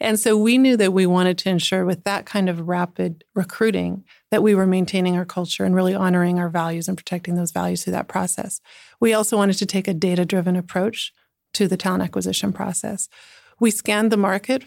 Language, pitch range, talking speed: English, 180-205 Hz, 205 wpm